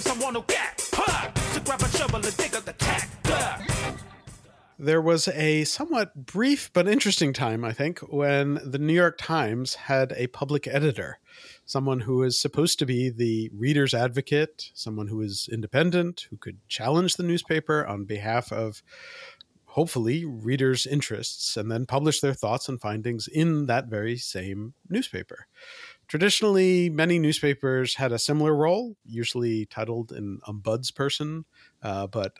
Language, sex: English, male